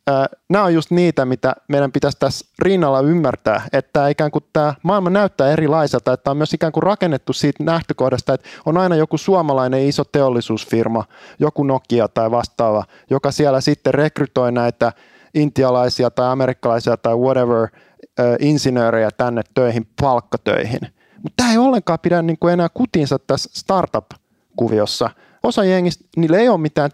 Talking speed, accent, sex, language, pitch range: 145 wpm, native, male, Finnish, 130-170 Hz